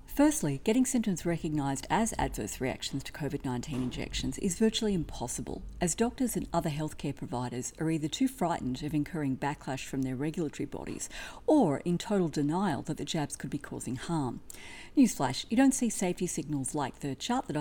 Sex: female